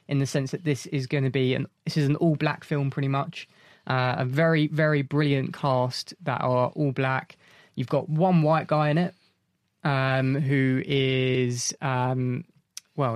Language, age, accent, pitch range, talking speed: English, 20-39, British, 130-155 Hz, 180 wpm